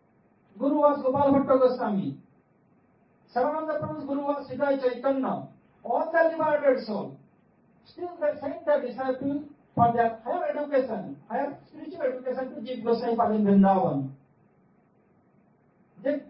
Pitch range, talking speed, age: 230-290 Hz, 120 wpm, 50-69